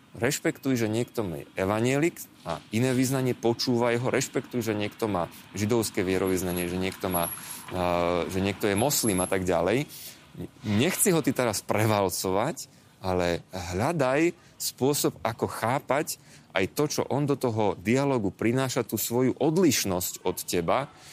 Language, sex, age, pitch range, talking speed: Slovak, male, 30-49, 100-135 Hz, 140 wpm